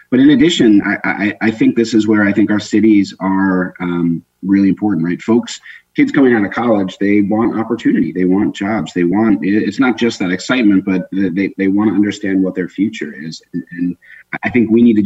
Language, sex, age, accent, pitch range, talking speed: English, male, 30-49, American, 90-105 Hz, 215 wpm